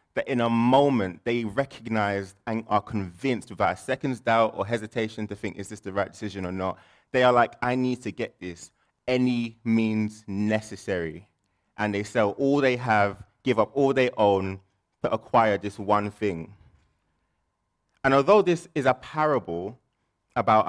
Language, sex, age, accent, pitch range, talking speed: English, male, 20-39, British, 100-125 Hz, 170 wpm